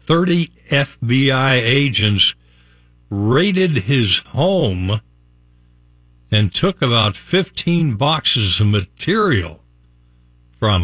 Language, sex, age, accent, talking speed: English, male, 60-79, American, 80 wpm